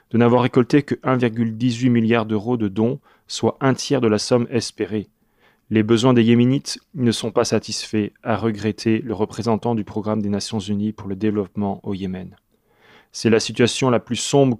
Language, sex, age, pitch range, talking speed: French, male, 30-49, 105-120 Hz, 175 wpm